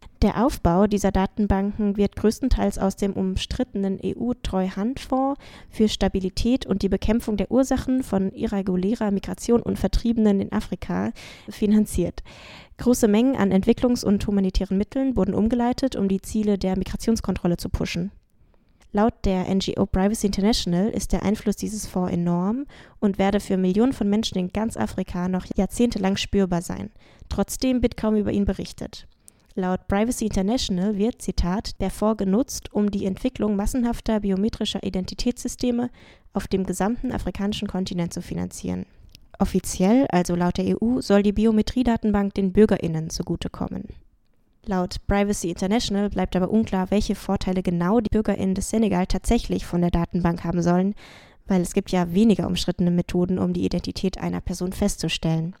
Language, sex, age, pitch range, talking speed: German, female, 10-29, 185-220 Hz, 145 wpm